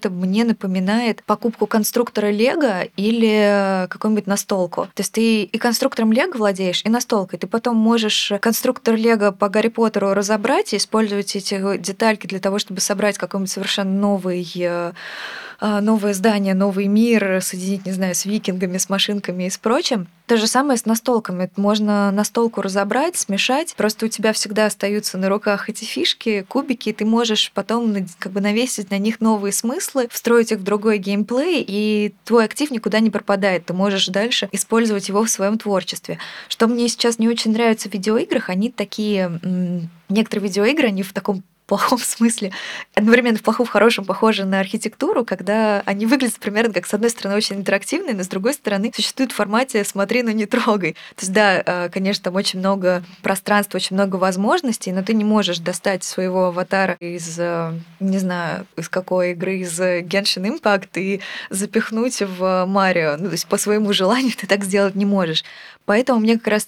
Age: 20-39